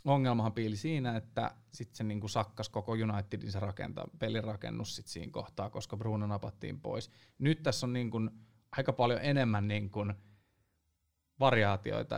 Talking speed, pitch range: 135 wpm, 105-120 Hz